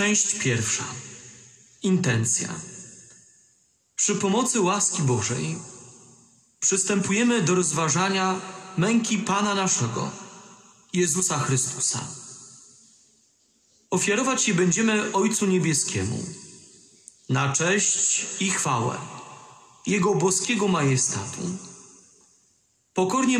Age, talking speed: 40-59, 70 wpm